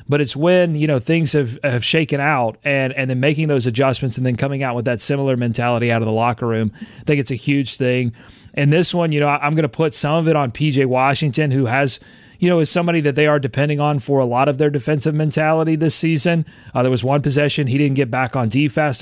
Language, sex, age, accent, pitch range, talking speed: English, male, 30-49, American, 125-150 Hz, 260 wpm